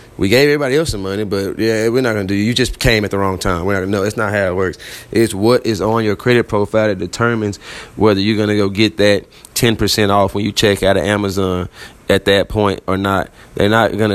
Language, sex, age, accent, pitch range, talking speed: English, male, 30-49, American, 95-110 Hz, 265 wpm